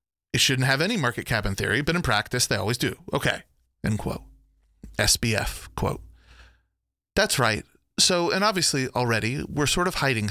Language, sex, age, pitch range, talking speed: English, male, 30-49, 105-140 Hz, 170 wpm